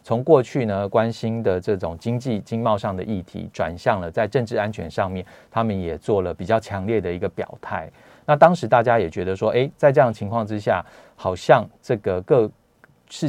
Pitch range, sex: 95-120 Hz, male